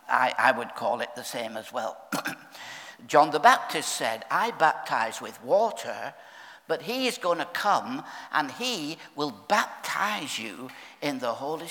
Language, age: English, 60-79